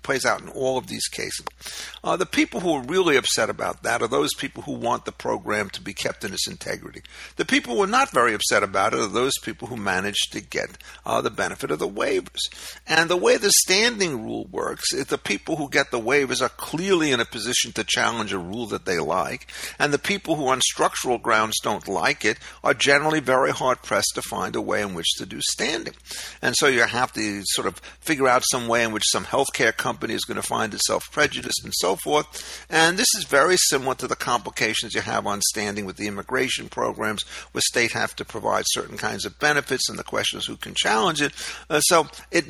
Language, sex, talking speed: English, male, 225 wpm